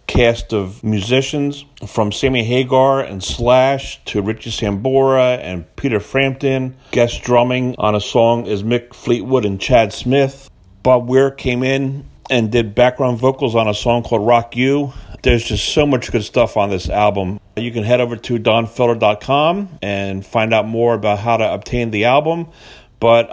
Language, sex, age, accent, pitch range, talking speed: English, male, 40-59, American, 105-125 Hz, 165 wpm